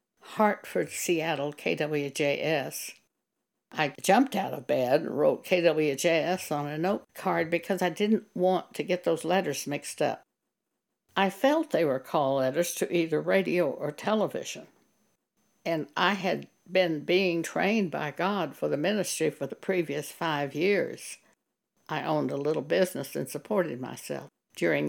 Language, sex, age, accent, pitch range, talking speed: English, female, 60-79, American, 150-185 Hz, 145 wpm